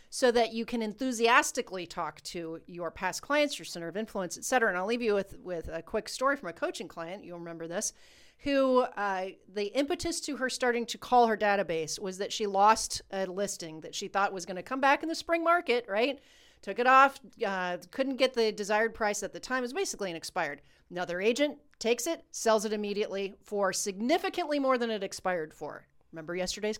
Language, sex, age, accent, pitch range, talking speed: English, female, 40-59, American, 190-260 Hz, 215 wpm